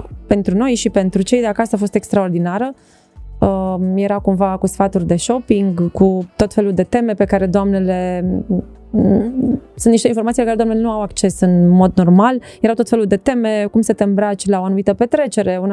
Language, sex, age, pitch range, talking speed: Romanian, female, 20-39, 190-225 Hz, 185 wpm